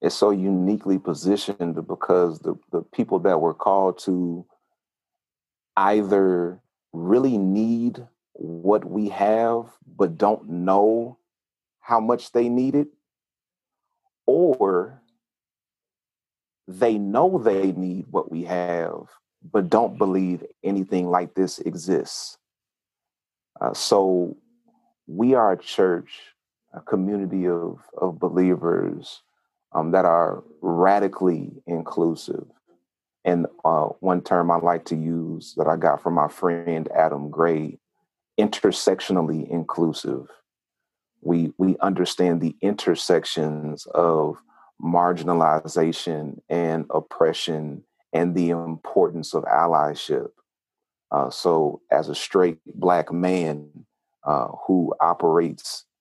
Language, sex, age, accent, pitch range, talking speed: English, male, 40-59, American, 85-100 Hz, 105 wpm